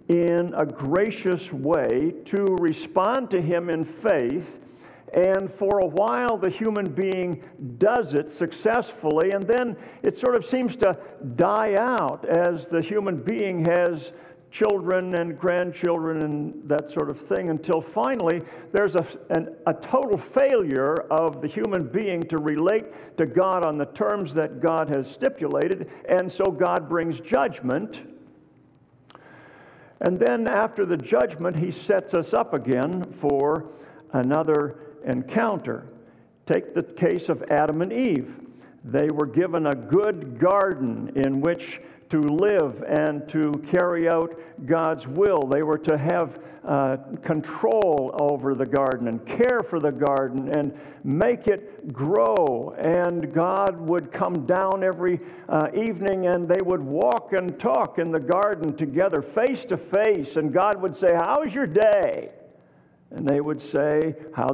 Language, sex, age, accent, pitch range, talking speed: English, male, 60-79, American, 155-195 Hz, 145 wpm